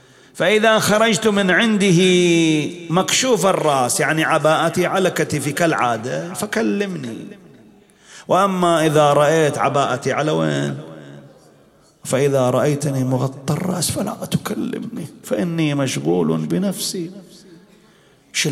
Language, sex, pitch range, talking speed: English, male, 170-205 Hz, 90 wpm